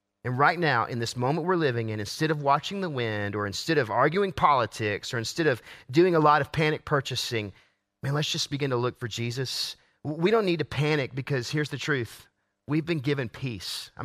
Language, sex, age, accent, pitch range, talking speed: English, male, 30-49, American, 110-150 Hz, 215 wpm